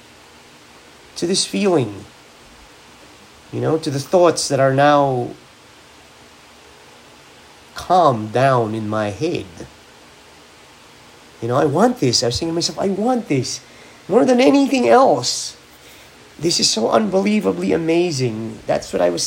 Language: English